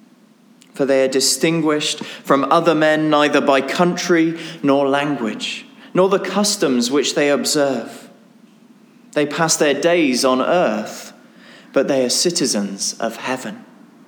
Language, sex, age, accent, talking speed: English, male, 20-39, British, 130 wpm